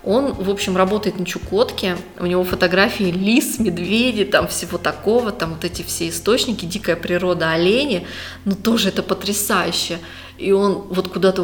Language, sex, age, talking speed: Russian, female, 20-39, 155 wpm